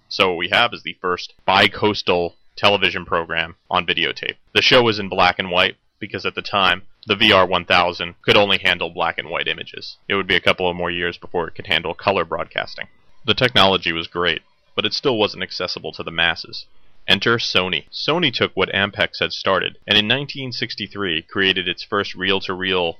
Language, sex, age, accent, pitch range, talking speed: English, male, 30-49, American, 90-110 Hz, 190 wpm